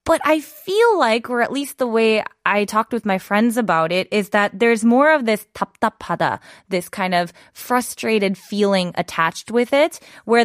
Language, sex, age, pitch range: Korean, female, 20-39, 210-270 Hz